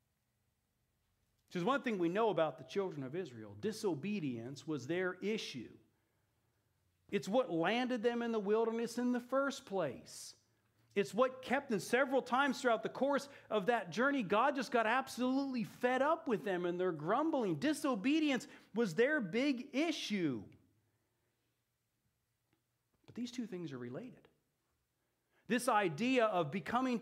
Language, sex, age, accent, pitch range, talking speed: English, male, 40-59, American, 155-245 Hz, 140 wpm